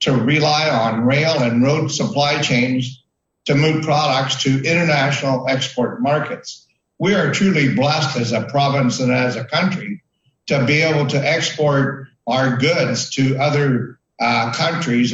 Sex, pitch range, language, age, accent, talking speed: male, 125-155 Hz, English, 60-79, American, 145 wpm